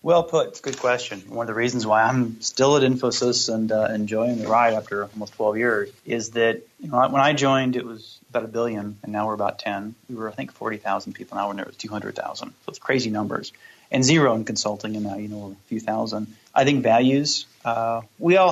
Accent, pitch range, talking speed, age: American, 110-125 Hz, 235 wpm, 30-49